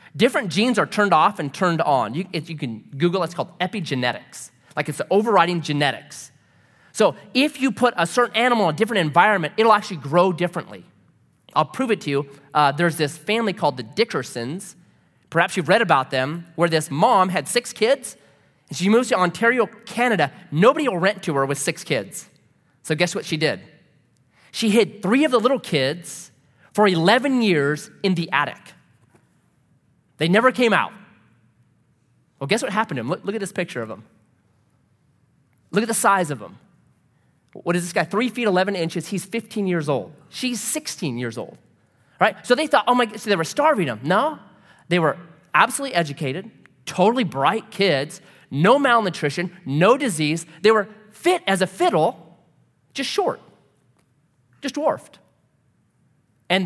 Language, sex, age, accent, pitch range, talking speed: English, male, 30-49, American, 150-220 Hz, 175 wpm